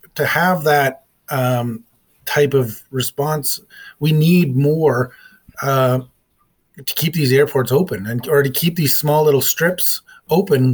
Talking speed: 140 wpm